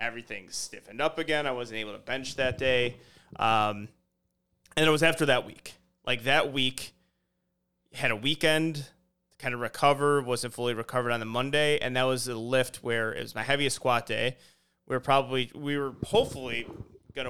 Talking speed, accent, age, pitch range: 185 wpm, American, 30-49, 115-140 Hz